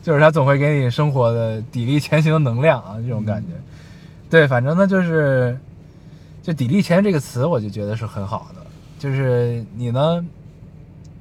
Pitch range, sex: 120-160 Hz, male